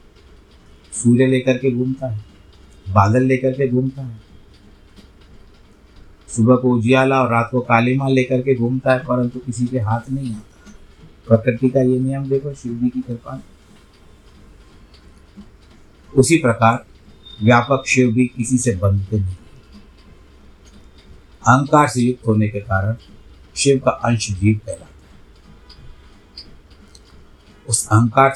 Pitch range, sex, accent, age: 80-125 Hz, male, native, 50-69